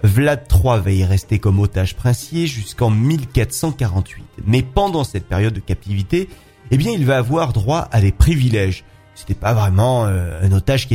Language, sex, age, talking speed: French, male, 30-49, 180 wpm